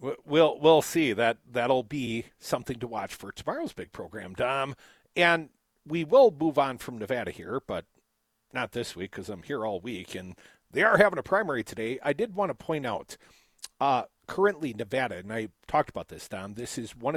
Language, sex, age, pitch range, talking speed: English, male, 50-69, 125-180 Hz, 200 wpm